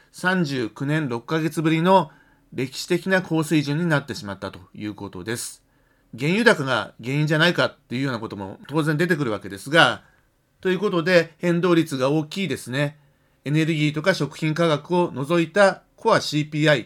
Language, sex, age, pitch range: Japanese, male, 40-59, 130-170 Hz